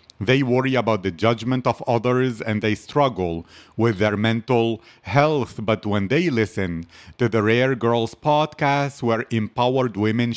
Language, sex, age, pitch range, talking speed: English, male, 40-59, 105-130 Hz, 150 wpm